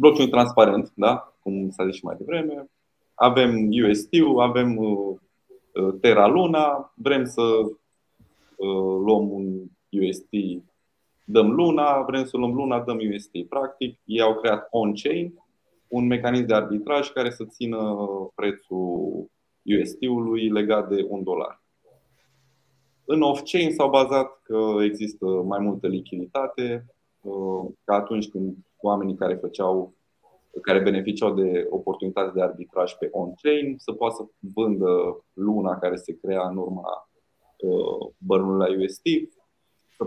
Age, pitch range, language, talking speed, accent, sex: 20-39, 95-135 Hz, Romanian, 130 wpm, native, male